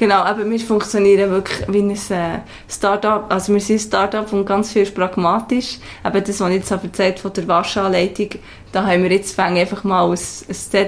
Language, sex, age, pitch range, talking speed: German, female, 20-39, 180-200 Hz, 195 wpm